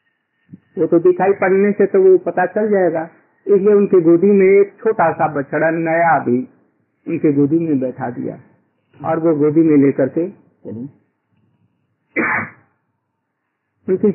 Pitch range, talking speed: 145-190 Hz, 135 wpm